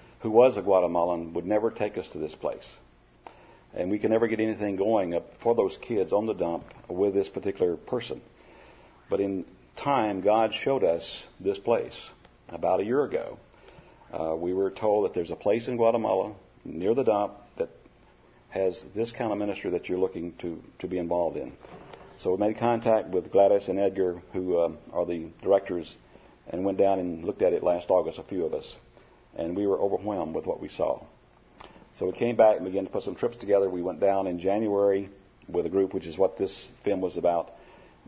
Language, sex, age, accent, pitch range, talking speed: English, male, 50-69, American, 90-105 Hz, 205 wpm